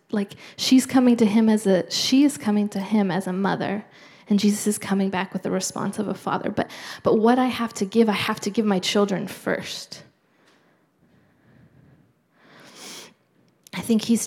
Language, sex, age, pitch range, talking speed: English, female, 20-39, 195-230 Hz, 180 wpm